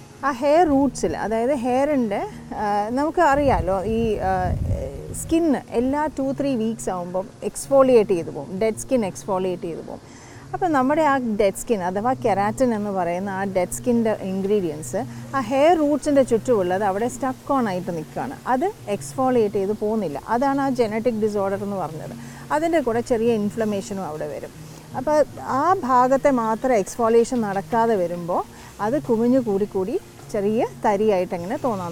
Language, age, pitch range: Malayalam, 30-49, 195-265 Hz